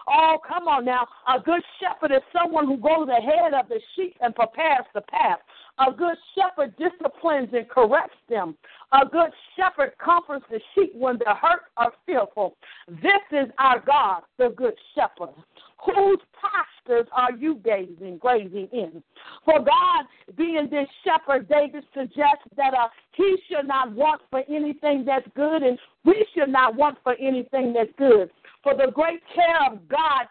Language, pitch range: English, 255-330 Hz